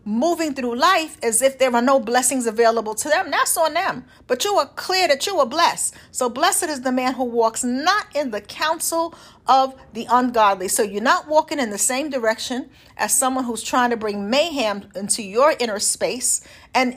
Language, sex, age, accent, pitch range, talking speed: English, female, 50-69, American, 225-300 Hz, 200 wpm